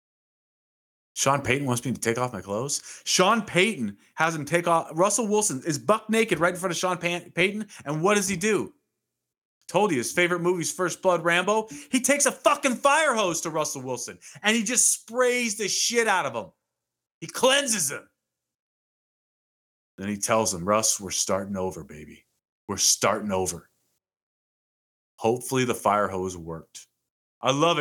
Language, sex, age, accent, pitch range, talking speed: English, male, 30-49, American, 105-170 Hz, 170 wpm